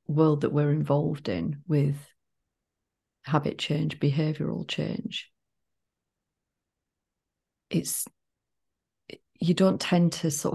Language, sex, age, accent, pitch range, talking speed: English, female, 40-59, British, 140-160 Hz, 90 wpm